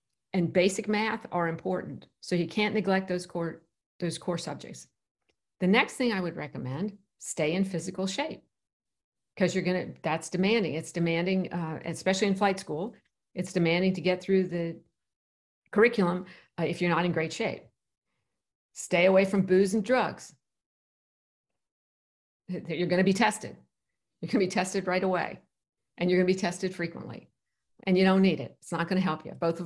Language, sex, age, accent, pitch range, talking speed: English, female, 50-69, American, 170-205 Hz, 170 wpm